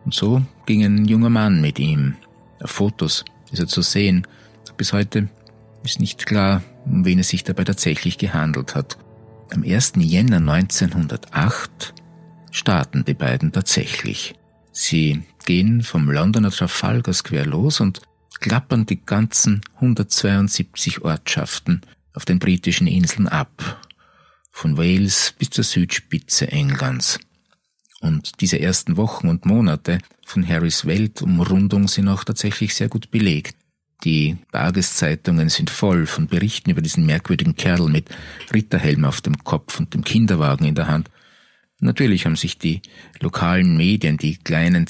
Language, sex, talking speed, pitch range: German, male, 140 wpm, 90-120 Hz